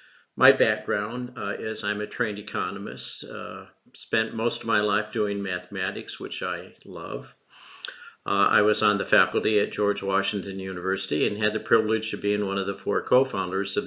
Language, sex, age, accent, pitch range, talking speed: English, male, 50-69, American, 100-125 Hz, 175 wpm